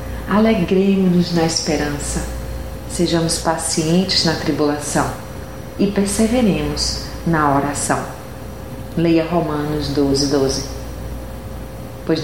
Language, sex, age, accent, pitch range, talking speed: Portuguese, female, 40-59, Brazilian, 135-185 Hz, 80 wpm